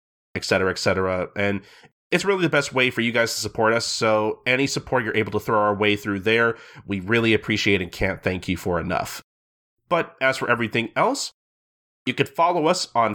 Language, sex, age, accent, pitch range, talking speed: English, male, 30-49, American, 105-135 Hz, 200 wpm